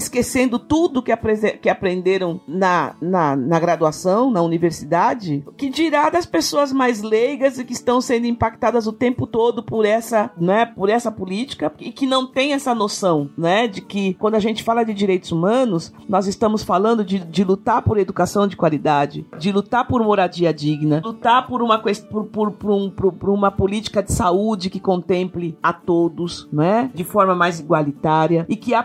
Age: 50-69